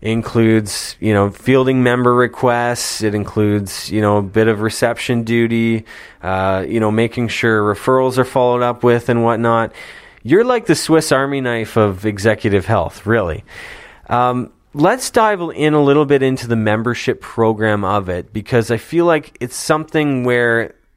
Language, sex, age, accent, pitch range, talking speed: English, male, 20-39, American, 100-125 Hz, 165 wpm